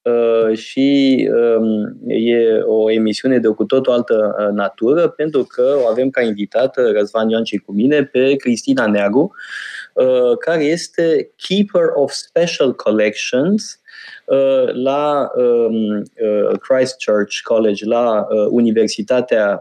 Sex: male